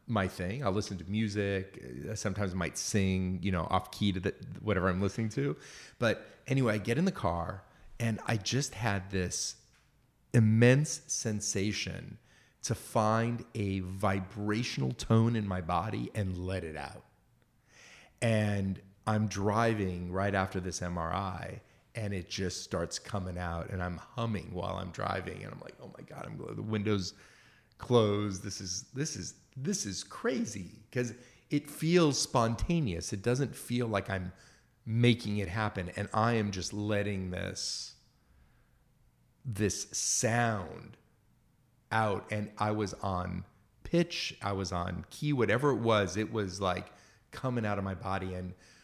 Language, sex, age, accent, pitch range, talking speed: English, male, 30-49, American, 95-120 Hz, 155 wpm